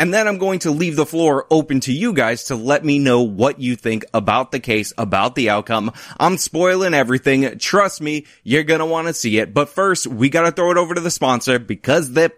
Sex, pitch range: male, 120-165 Hz